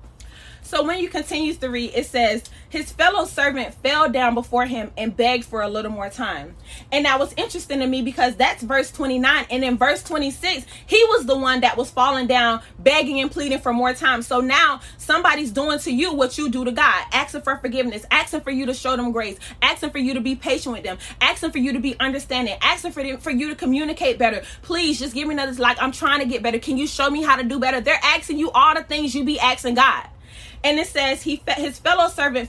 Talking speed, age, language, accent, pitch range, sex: 240 wpm, 20-39, English, American, 245-300 Hz, female